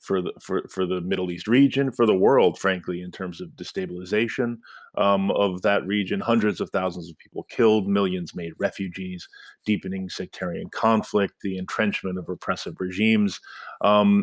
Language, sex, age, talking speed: English, male, 30-49, 160 wpm